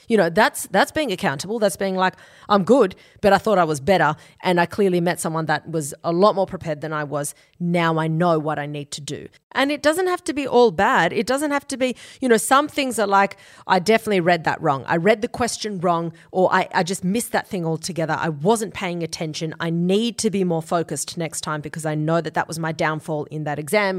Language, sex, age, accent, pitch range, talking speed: English, female, 30-49, Australian, 165-230 Hz, 250 wpm